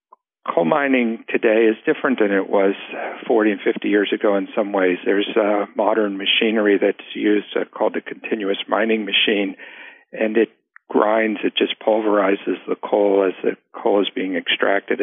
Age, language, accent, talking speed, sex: 60-79, English, American, 170 wpm, male